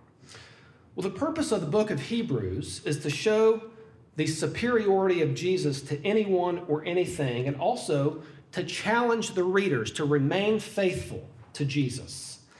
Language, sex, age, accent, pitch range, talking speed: English, male, 40-59, American, 140-185 Hz, 145 wpm